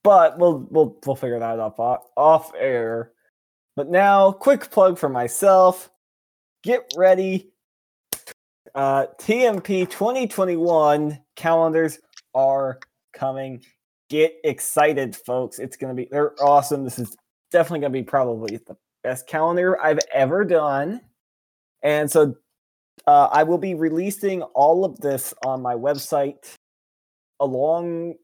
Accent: American